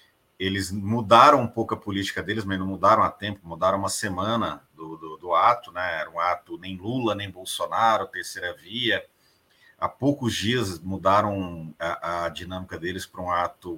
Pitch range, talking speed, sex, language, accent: 90-110 Hz, 175 wpm, male, Portuguese, Brazilian